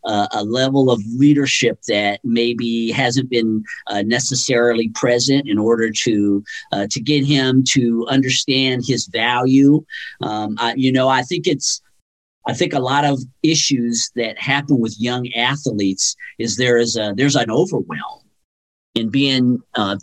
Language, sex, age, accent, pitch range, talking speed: English, male, 50-69, American, 115-145 Hz, 145 wpm